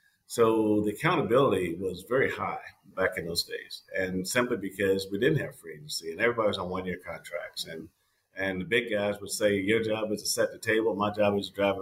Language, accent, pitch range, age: English, American, 95-110 Hz, 50-69